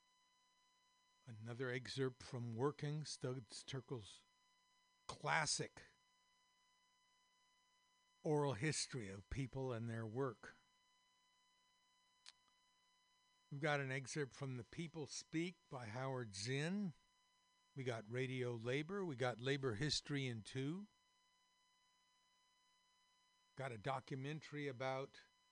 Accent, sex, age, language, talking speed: American, male, 60-79, English, 90 wpm